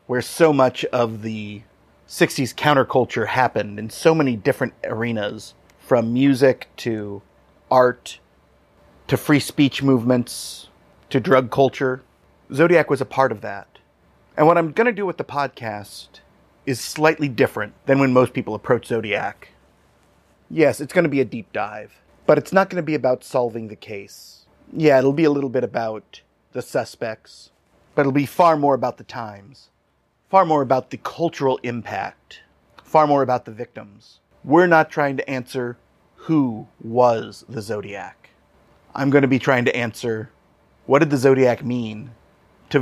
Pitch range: 110-140 Hz